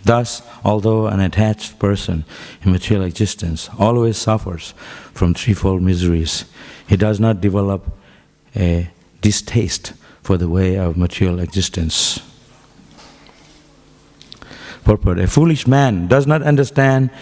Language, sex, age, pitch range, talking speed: English, male, 60-79, 90-115 Hz, 110 wpm